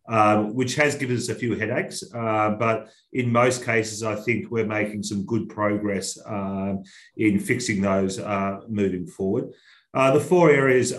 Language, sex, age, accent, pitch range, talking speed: English, male, 40-59, Australian, 105-120 Hz, 170 wpm